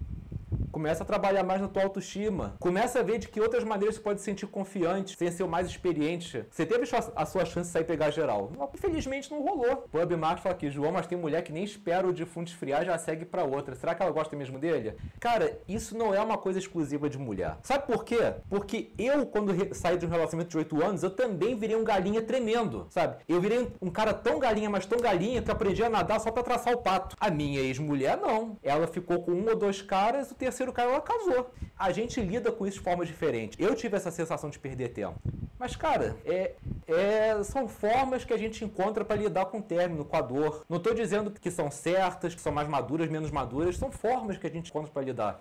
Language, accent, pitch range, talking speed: Portuguese, Brazilian, 165-230 Hz, 240 wpm